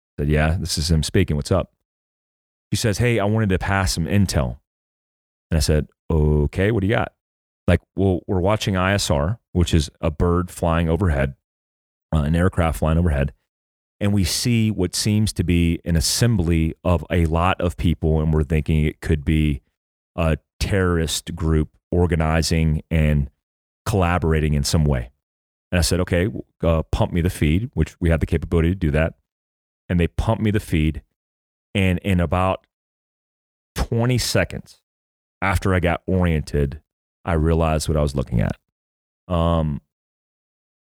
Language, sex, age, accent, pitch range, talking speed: English, male, 30-49, American, 75-95 Hz, 160 wpm